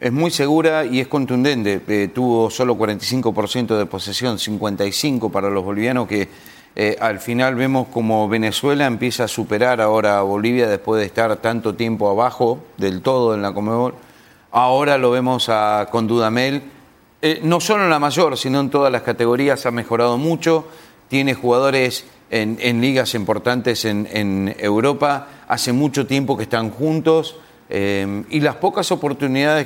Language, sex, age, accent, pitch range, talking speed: English, male, 40-59, Argentinian, 115-150 Hz, 165 wpm